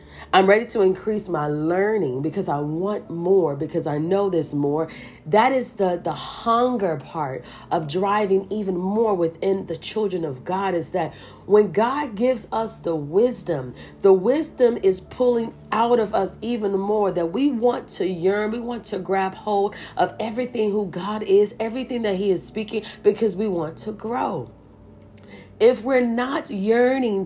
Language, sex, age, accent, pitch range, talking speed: English, female, 40-59, American, 165-225 Hz, 165 wpm